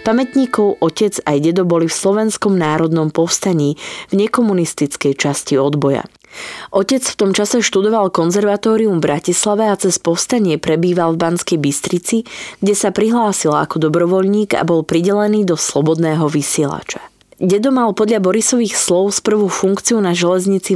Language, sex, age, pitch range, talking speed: Slovak, female, 20-39, 165-210 Hz, 140 wpm